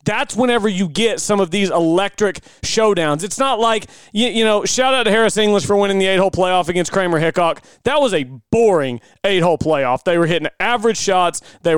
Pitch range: 170-220 Hz